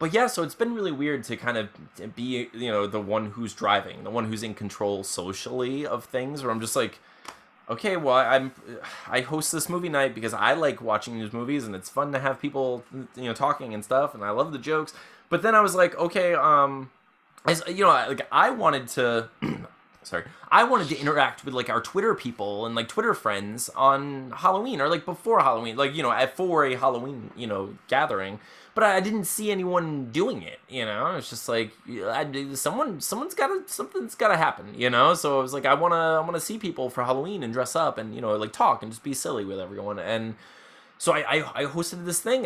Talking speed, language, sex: 230 wpm, English, male